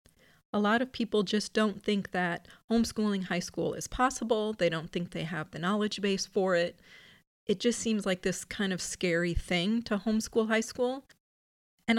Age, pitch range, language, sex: 30-49, 175-220 Hz, English, female